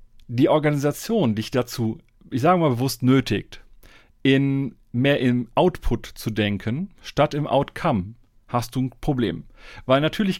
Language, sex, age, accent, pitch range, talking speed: German, male, 40-59, German, 115-145 Hz, 140 wpm